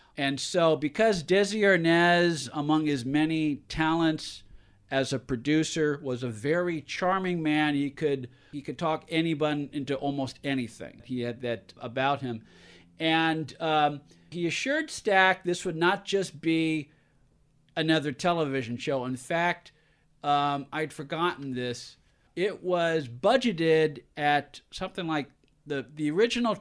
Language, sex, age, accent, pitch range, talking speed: English, male, 50-69, American, 130-165 Hz, 135 wpm